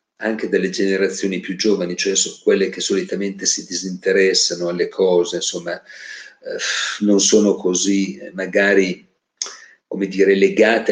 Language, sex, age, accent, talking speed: Italian, male, 50-69, native, 115 wpm